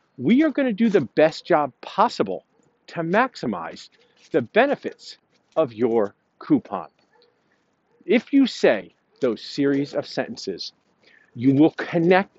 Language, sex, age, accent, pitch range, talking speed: English, male, 50-69, American, 130-200 Hz, 125 wpm